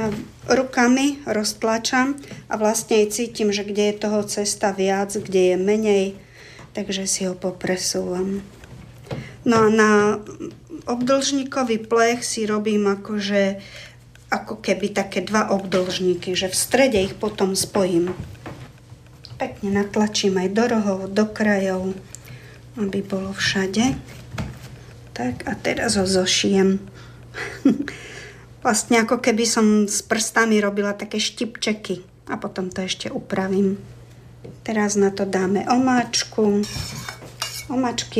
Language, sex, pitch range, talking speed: Slovak, female, 190-225 Hz, 115 wpm